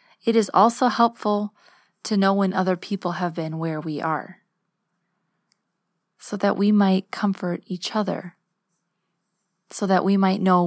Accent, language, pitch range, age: American, English, 180-210 Hz, 30-49